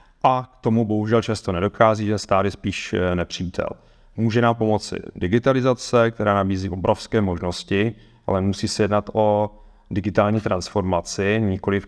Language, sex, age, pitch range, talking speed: Czech, male, 30-49, 90-105 Hz, 130 wpm